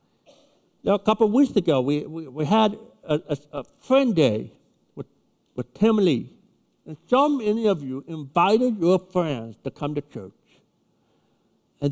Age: 60-79